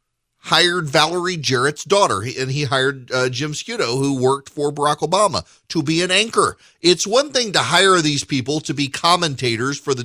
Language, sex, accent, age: English, male, American, 40-59